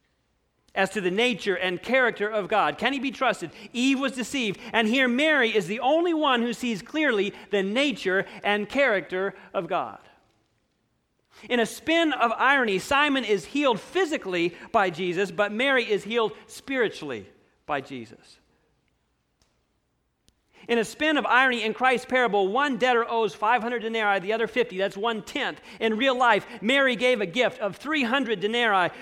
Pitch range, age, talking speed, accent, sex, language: 205-255 Hz, 40-59, 160 wpm, American, male, English